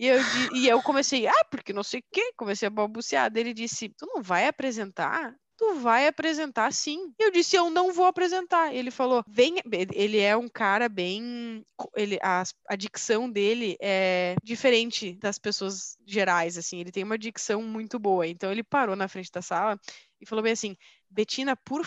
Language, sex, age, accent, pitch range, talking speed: Portuguese, female, 20-39, Brazilian, 195-255 Hz, 190 wpm